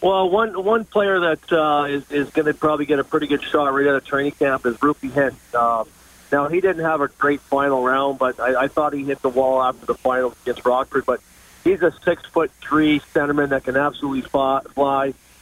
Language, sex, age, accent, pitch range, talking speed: English, male, 40-59, American, 130-145 Hz, 220 wpm